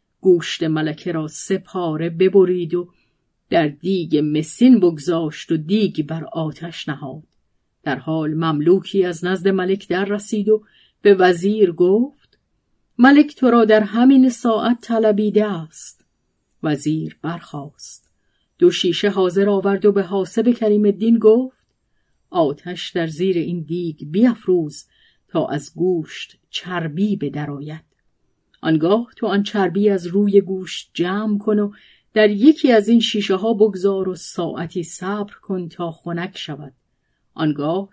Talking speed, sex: 135 wpm, female